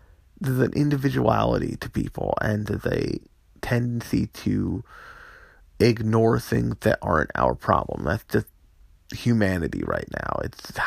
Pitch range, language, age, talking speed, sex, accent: 80-125 Hz, English, 30-49, 120 wpm, male, American